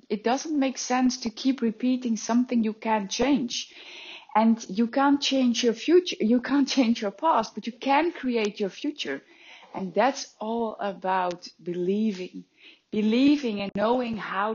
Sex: female